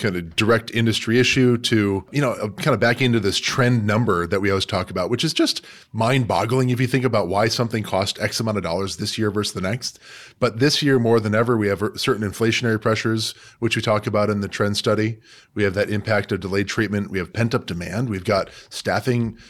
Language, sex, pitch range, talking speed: English, male, 100-120 Hz, 230 wpm